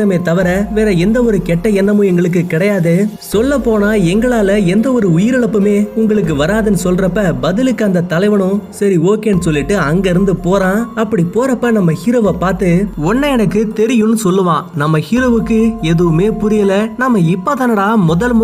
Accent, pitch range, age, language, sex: native, 180-220 Hz, 20-39, Tamil, male